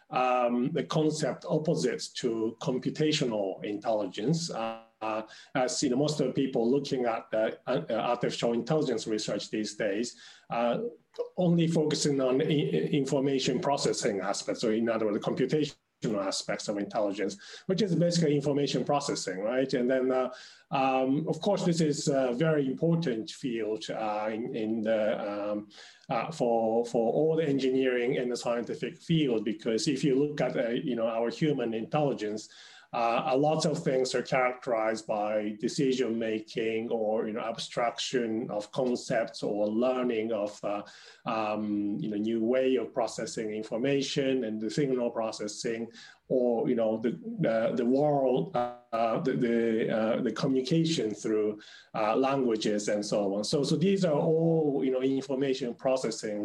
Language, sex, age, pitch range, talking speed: English, male, 40-59, 110-145 Hz, 155 wpm